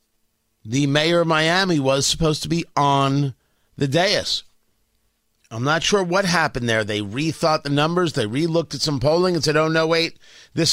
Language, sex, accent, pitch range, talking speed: English, male, American, 135-180 Hz, 180 wpm